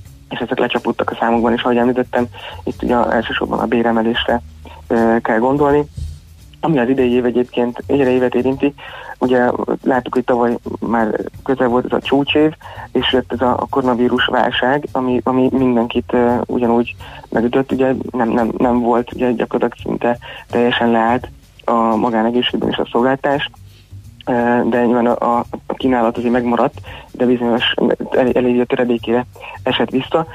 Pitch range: 115-125 Hz